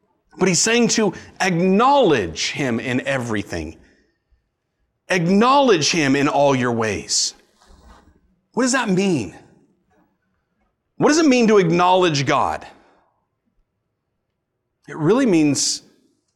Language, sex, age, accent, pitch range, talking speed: English, male, 30-49, American, 135-210 Hz, 105 wpm